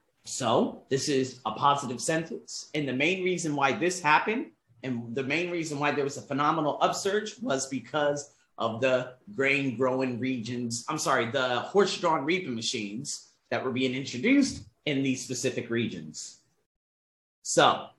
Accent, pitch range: American, 125-170 Hz